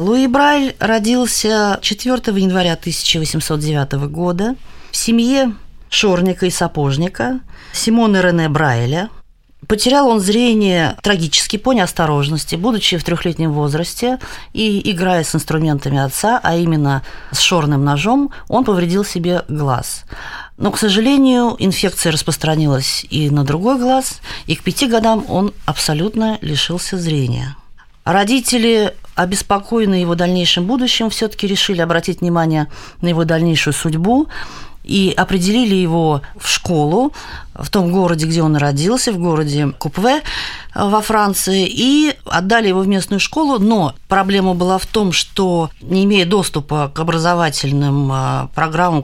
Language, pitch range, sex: Russian, 160-220 Hz, female